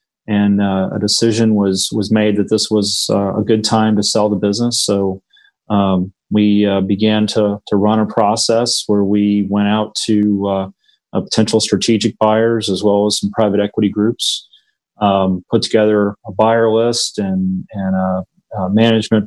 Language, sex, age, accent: English, male, 30-49, American